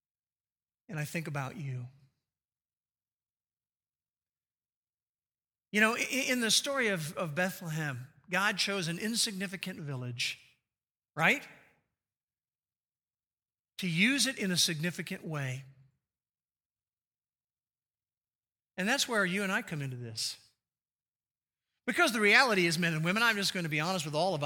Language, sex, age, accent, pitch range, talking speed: English, male, 50-69, American, 145-210 Hz, 125 wpm